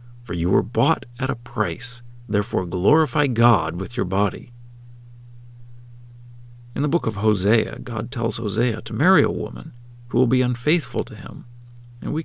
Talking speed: 160 wpm